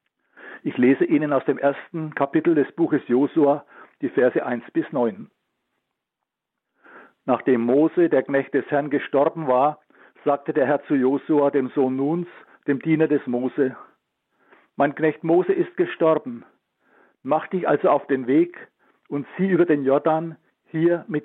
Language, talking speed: German, 150 wpm